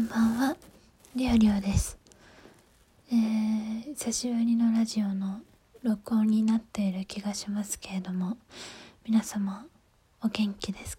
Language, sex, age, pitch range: Japanese, female, 20-39, 205-235 Hz